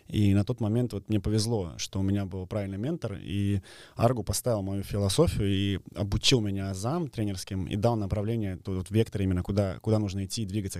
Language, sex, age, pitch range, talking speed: Russian, male, 20-39, 95-110 Hz, 200 wpm